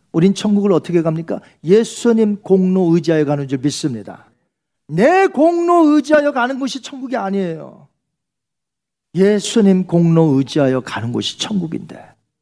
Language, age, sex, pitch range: Korean, 40-59, male, 165-255 Hz